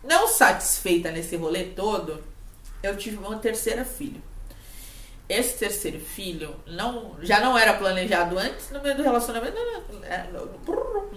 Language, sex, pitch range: Portuguese, female, 165-225 Hz